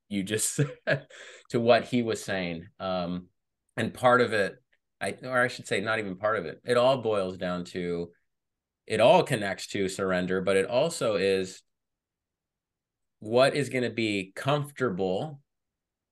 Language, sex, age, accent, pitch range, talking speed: English, male, 30-49, American, 90-110 Hz, 160 wpm